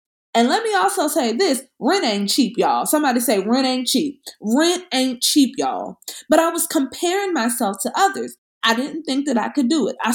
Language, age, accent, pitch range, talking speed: English, 20-39, American, 215-285 Hz, 205 wpm